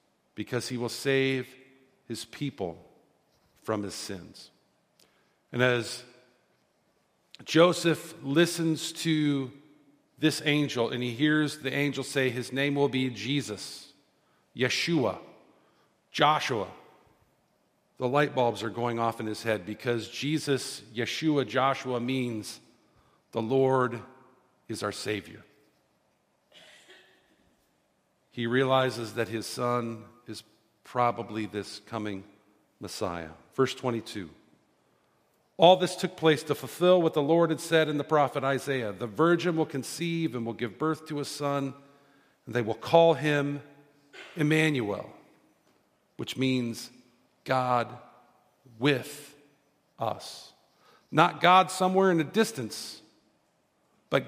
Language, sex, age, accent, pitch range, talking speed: English, male, 50-69, American, 120-150 Hz, 115 wpm